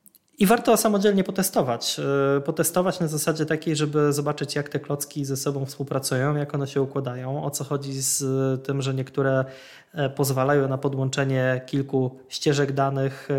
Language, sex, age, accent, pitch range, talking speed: Polish, male, 20-39, native, 135-155 Hz, 150 wpm